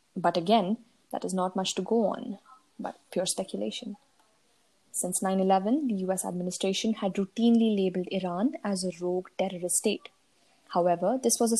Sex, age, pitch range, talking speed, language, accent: female, 20-39, 180-225 Hz, 155 wpm, English, Indian